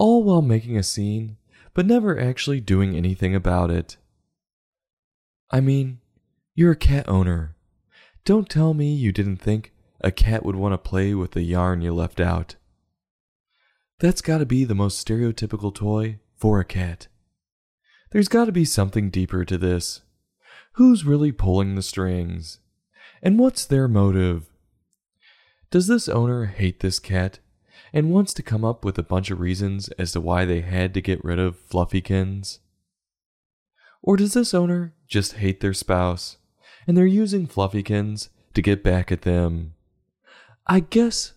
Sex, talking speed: male, 160 wpm